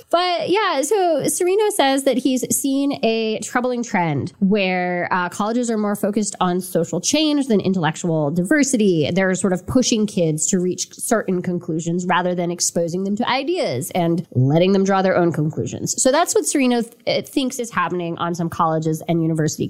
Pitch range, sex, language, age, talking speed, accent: 175-260 Hz, female, English, 20-39, 175 wpm, American